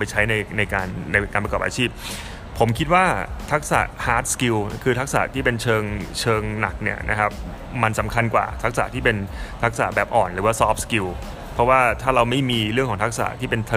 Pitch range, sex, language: 110-135 Hz, male, Thai